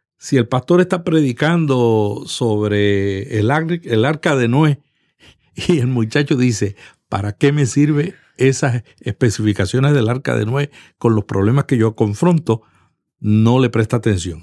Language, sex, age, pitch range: Spanish, male, 60-79, 110-155 Hz